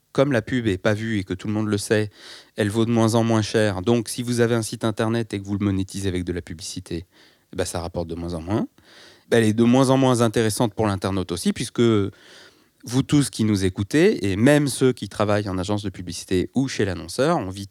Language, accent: French, French